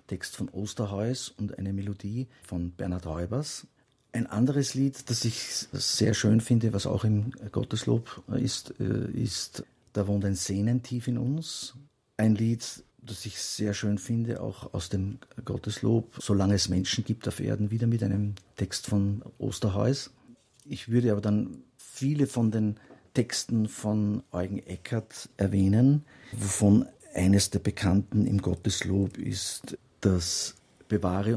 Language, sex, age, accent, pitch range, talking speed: German, male, 50-69, Austrian, 100-120 Hz, 140 wpm